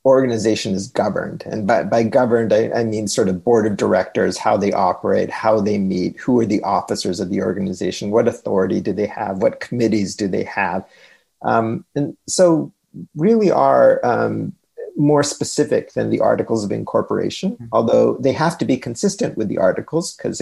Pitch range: 110-175 Hz